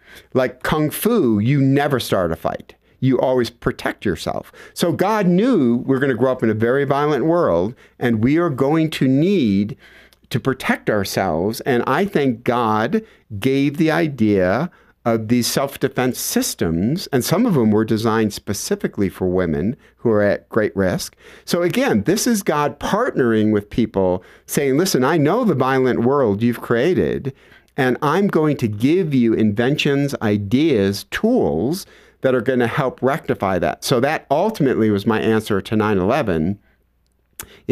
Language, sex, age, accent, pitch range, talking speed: English, male, 50-69, American, 110-145 Hz, 155 wpm